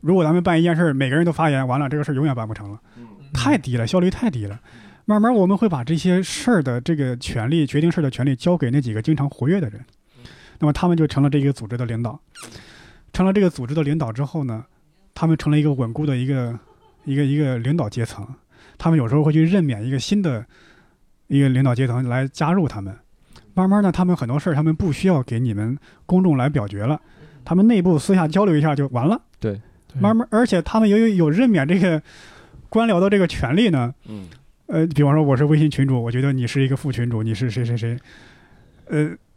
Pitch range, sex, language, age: 125-175 Hz, male, Chinese, 20-39